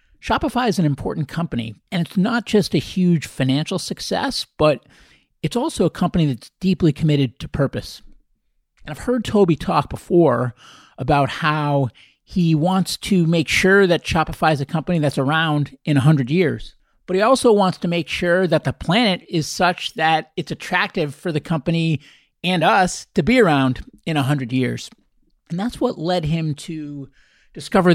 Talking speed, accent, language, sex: 170 wpm, American, English, male